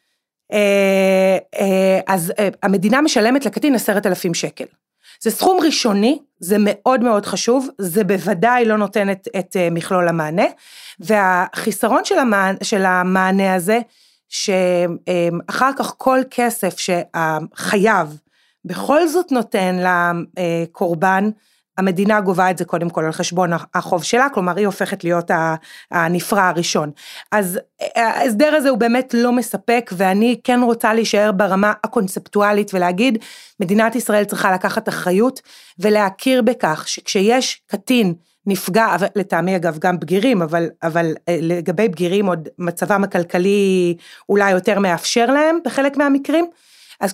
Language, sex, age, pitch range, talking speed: Hebrew, female, 30-49, 185-245 Hz, 125 wpm